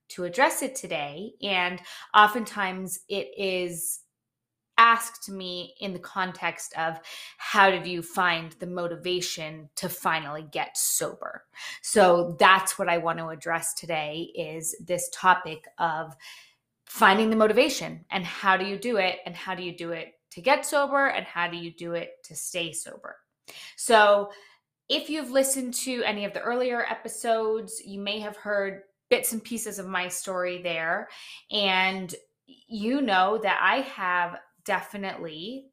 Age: 20-39